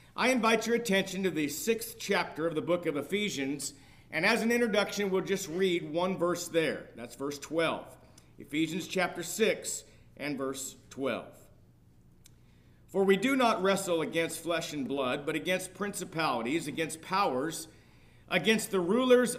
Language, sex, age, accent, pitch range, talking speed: English, male, 50-69, American, 165-210 Hz, 150 wpm